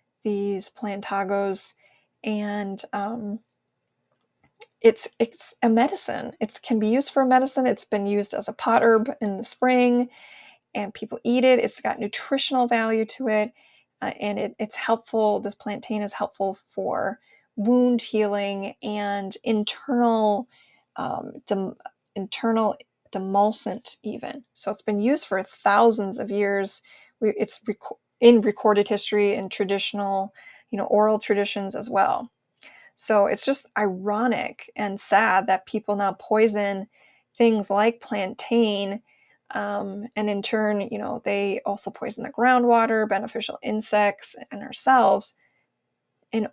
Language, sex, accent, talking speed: English, female, American, 135 wpm